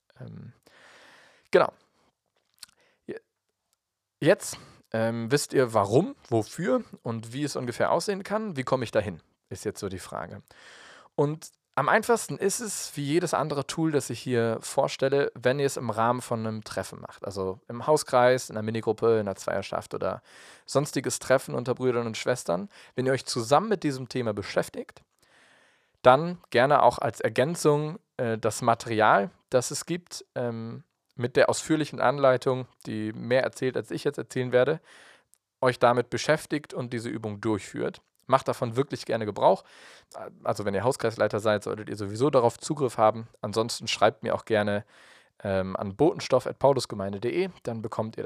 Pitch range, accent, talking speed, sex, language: 115-145 Hz, German, 155 wpm, male, German